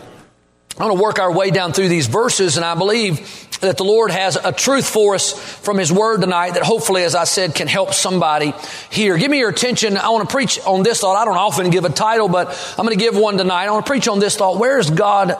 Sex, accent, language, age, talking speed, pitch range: male, American, English, 40-59, 265 wpm, 185-225 Hz